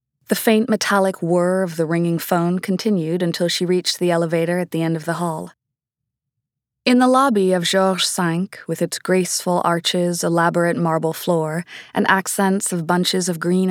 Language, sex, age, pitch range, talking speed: English, female, 20-39, 170-195 Hz, 170 wpm